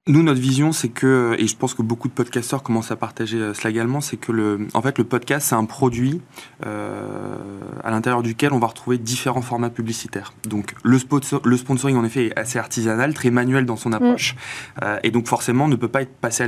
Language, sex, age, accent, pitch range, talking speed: French, male, 20-39, French, 110-130 Hz, 235 wpm